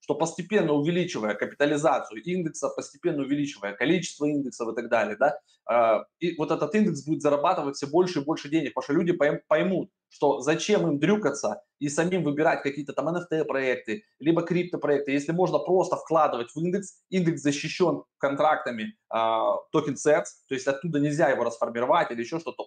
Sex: male